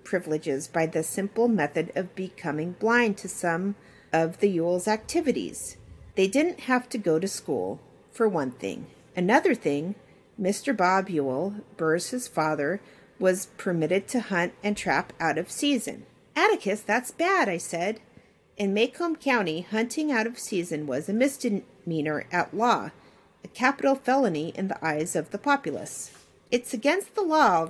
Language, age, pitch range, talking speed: English, 40-59, 170-245 Hz, 155 wpm